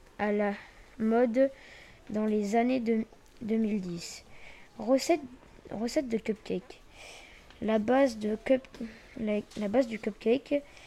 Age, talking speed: 20-39, 115 wpm